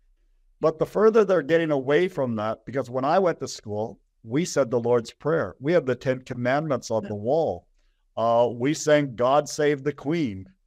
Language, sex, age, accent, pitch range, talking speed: English, male, 50-69, American, 115-145 Hz, 190 wpm